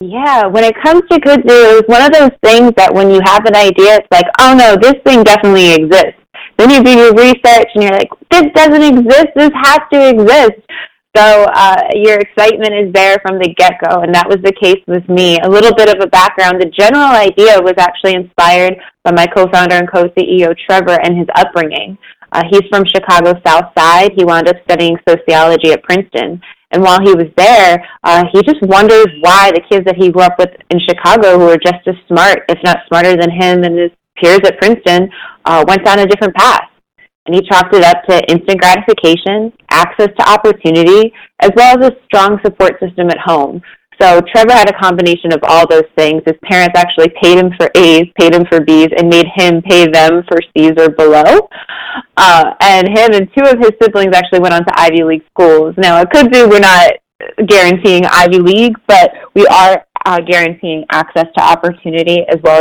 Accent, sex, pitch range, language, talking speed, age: American, female, 170-210 Hz, English, 205 wpm, 20-39